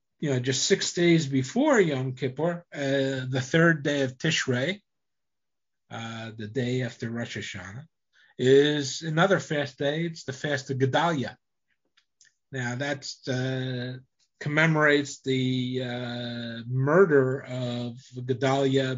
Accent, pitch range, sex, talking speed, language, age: American, 120-145 Hz, male, 120 wpm, English, 50-69